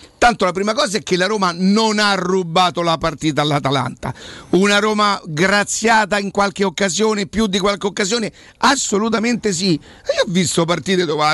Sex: male